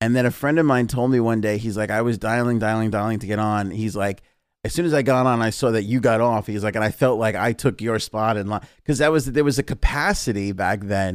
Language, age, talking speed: English, 30-49, 290 wpm